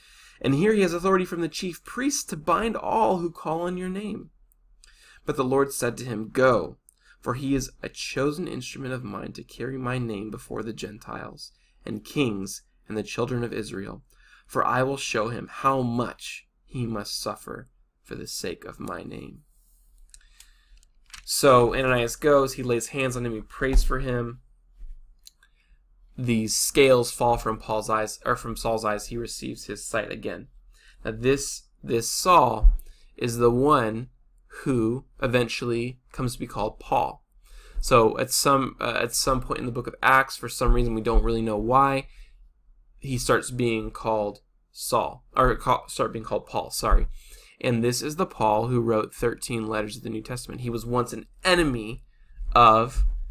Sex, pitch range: male, 110-135 Hz